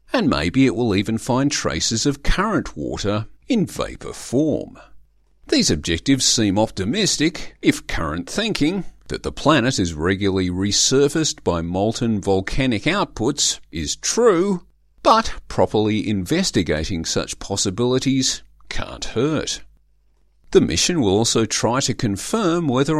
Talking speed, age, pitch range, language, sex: 125 wpm, 50-69, 95-145 Hz, English, male